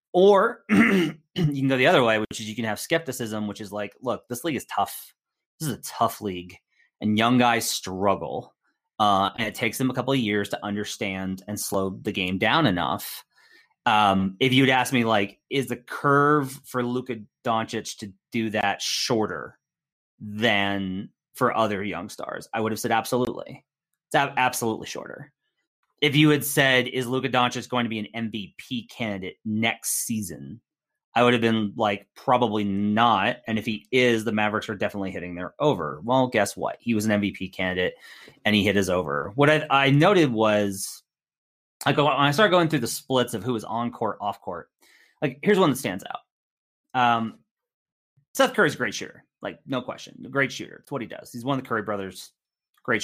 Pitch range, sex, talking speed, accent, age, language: 105-130 Hz, male, 195 wpm, American, 30-49, English